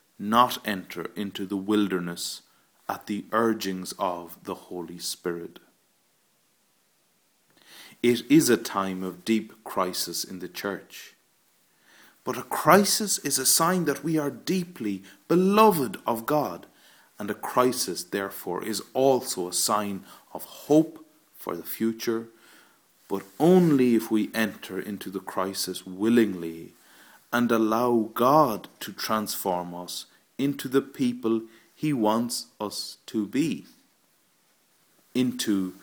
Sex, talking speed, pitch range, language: male, 120 wpm, 95-140 Hz, English